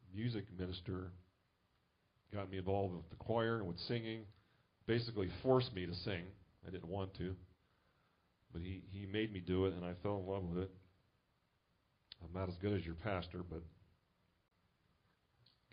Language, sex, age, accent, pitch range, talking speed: English, male, 40-59, American, 90-105 Hz, 165 wpm